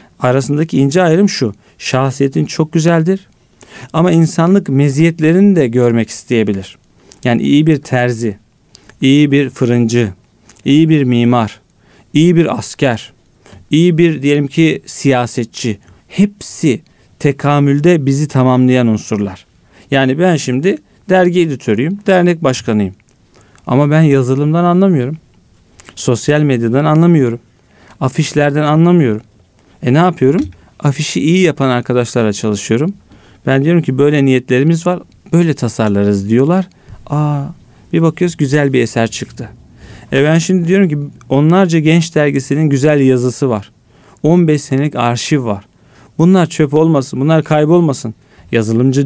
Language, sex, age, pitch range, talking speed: Turkish, male, 40-59, 120-155 Hz, 120 wpm